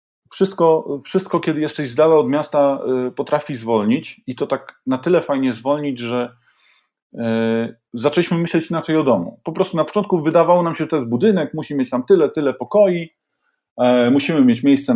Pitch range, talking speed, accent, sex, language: 120-160 Hz, 175 wpm, native, male, Polish